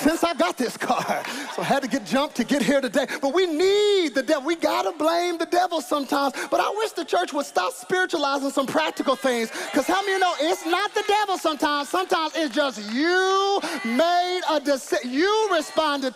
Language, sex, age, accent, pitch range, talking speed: English, male, 30-49, American, 270-380 Hz, 210 wpm